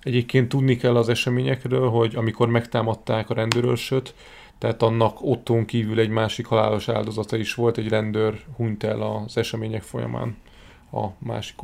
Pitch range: 115-135 Hz